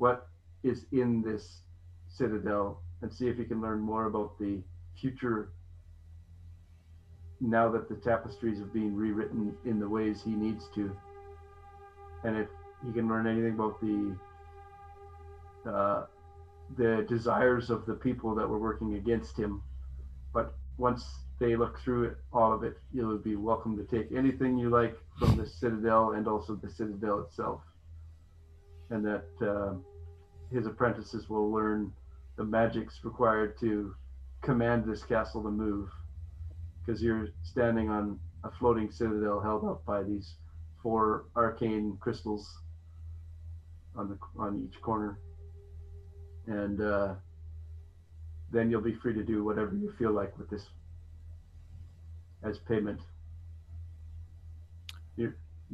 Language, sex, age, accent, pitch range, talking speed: English, male, 40-59, American, 85-110 Hz, 135 wpm